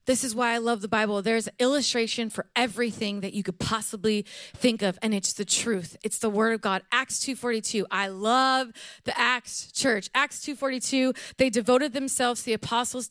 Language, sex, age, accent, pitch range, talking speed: English, female, 20-39, American, 225-275 Hz, 190 wpm